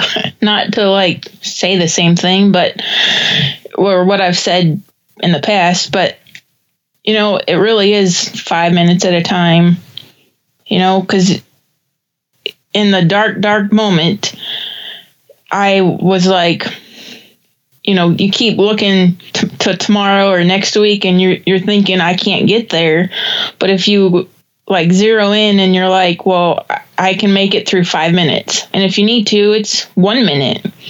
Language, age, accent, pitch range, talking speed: English, 20-39, American, 180-205 Hz, 155 wpm